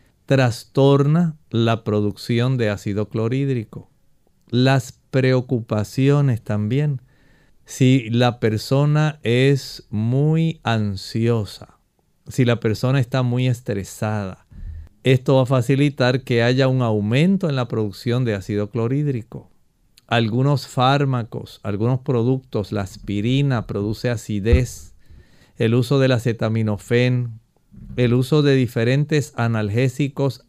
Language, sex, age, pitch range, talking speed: Spanish, male, 50-69, 115-140 Hz, 100 wpm